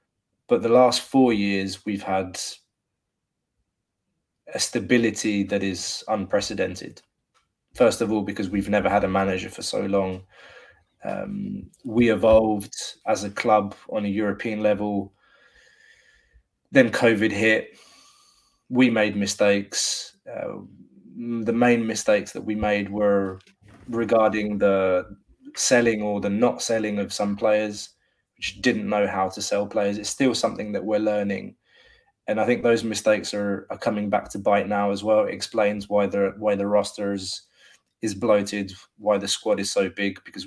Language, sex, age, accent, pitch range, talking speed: English, male, 20-39, British, 100-115 Hz, 150 wpm